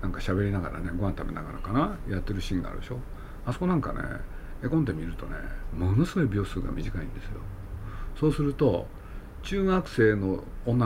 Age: 50-69